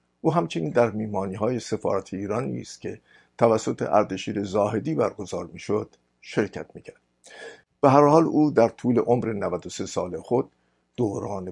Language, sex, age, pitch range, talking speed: Persian, male, 50-69, 90-120 Hz, 150 wpm